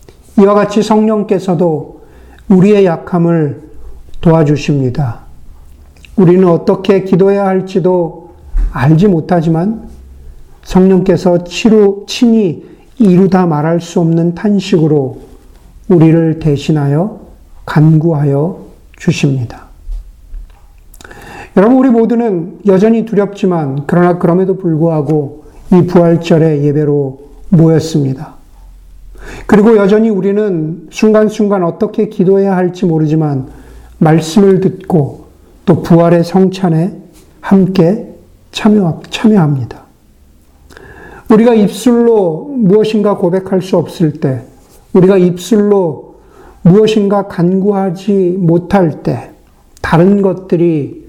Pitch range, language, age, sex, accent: 150-200 Hz, Korean, 50-69, male, native